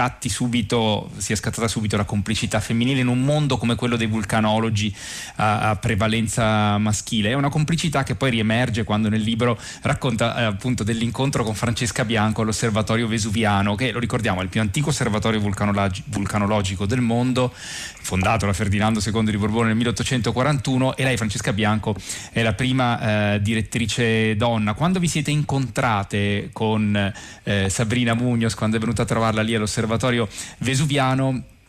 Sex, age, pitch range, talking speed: male, 30-49, 105-125 Hz, 150 wpm